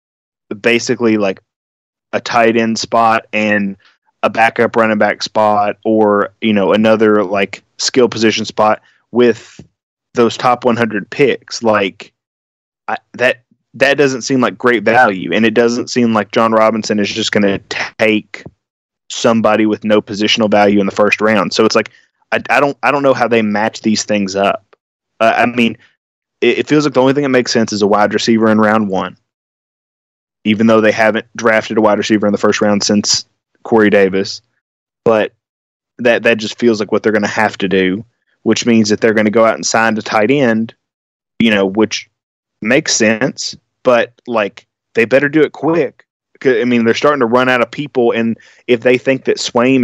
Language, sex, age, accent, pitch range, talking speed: English, male, 20-39, American, 105-120 Hz, 190 wpm